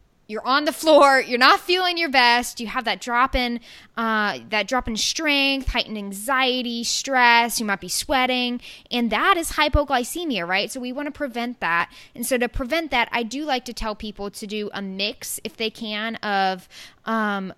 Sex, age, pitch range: female, 10-29, 205-255 Hz